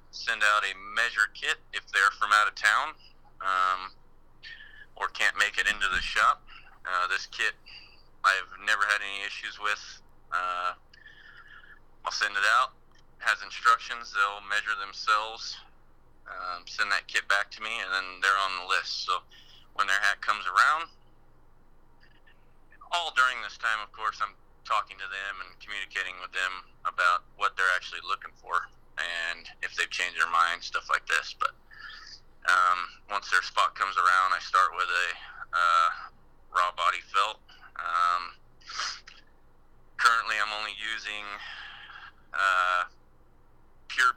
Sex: male